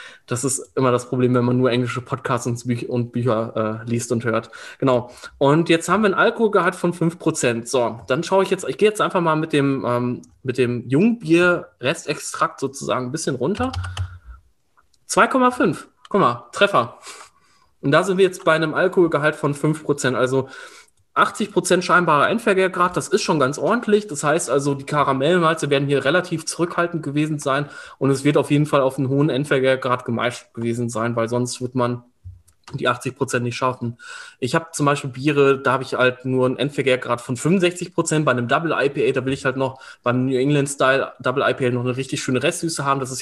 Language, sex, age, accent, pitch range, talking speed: German, male, 20-39, German, 125-160 Hz, 190 wpm